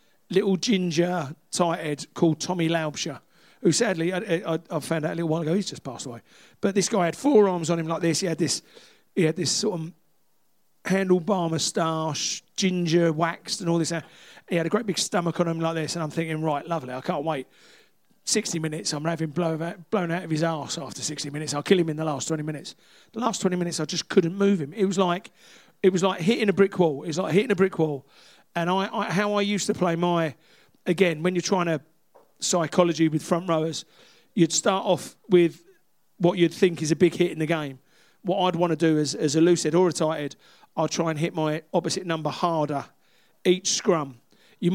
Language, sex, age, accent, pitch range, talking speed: English, male, 40-59, British, 160-185 Hz, 225 wpm